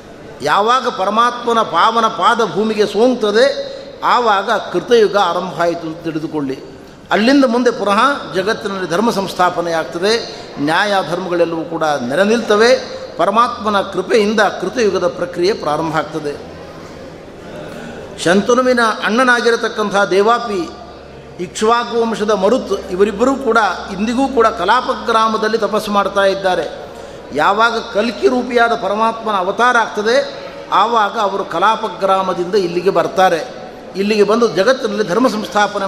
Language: Kannada